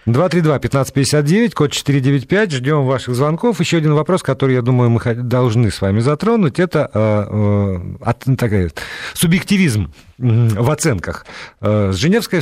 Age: 50-69